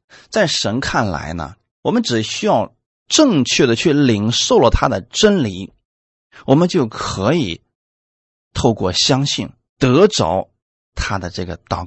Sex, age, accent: male, 30-49, native